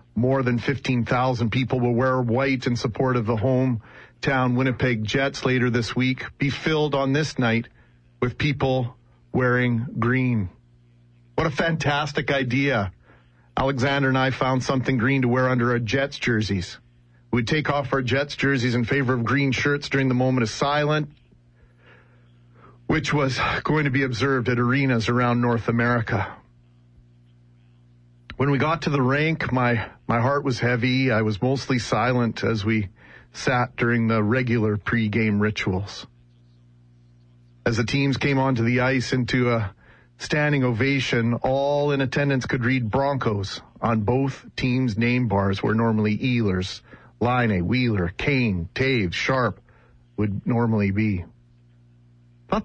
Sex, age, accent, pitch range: male, 40-59, American, 105-135 Hz